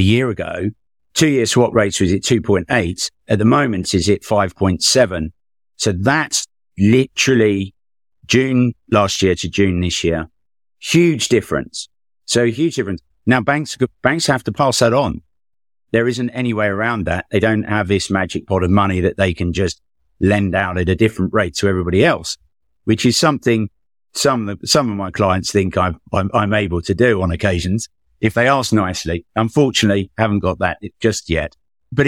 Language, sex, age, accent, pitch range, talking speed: English, male, 50-69, British, 95-115 Hz, 180 wpm